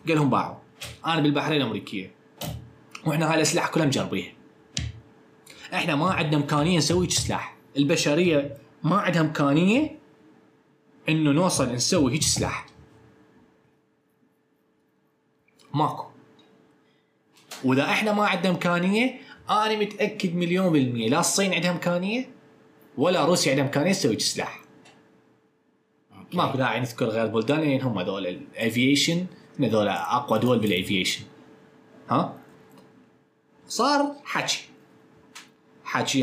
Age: 20-39